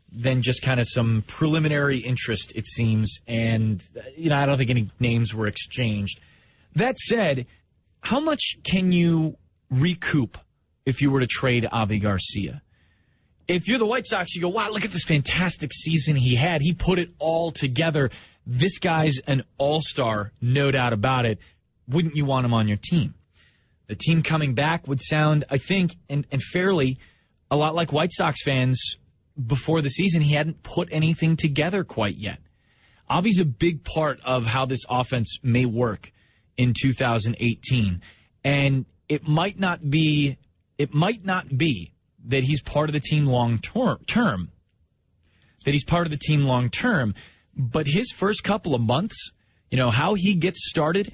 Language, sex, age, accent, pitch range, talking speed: English, male, 30-49, American, 120-160 Hz, 170 wpm